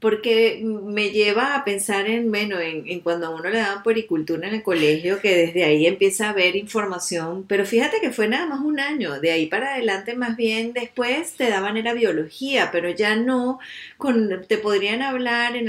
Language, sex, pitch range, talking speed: English, female, 195-245 Hz, 200 wpm